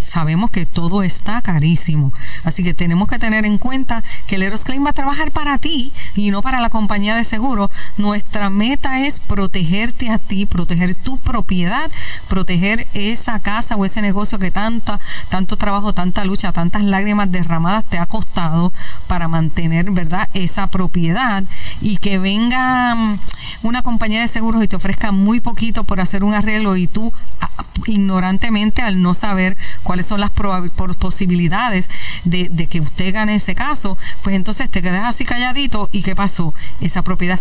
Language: Spanish